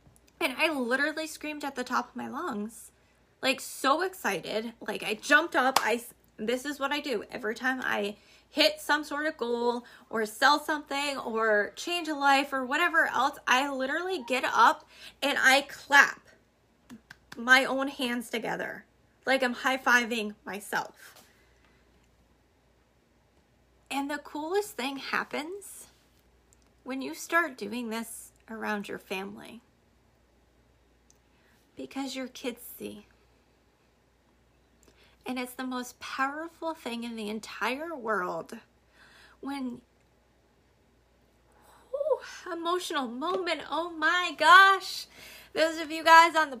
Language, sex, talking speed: English, female, 120 wpm